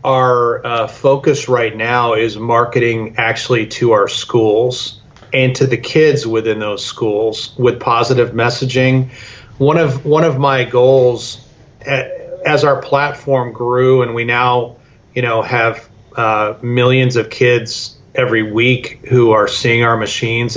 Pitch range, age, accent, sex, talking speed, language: 115-130 Hz, 30-49, American, male, 145 wpm, English